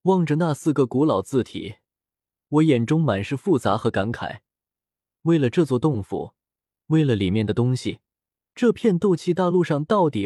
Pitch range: 110-170 Hz